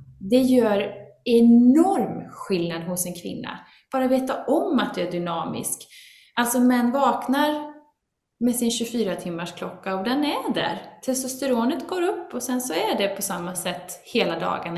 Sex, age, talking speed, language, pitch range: female, 20-39, 160 wpm, Swedish, 190-275 Hz